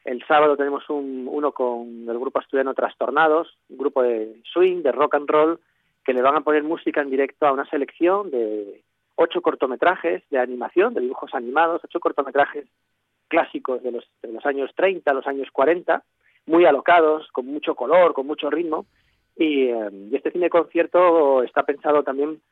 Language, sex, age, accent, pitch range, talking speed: Spanish, male, 40-59, Spanish, 125-150 Hz, 170 wpm